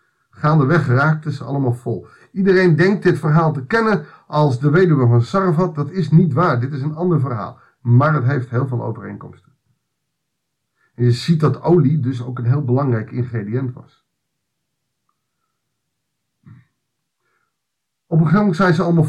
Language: Dutch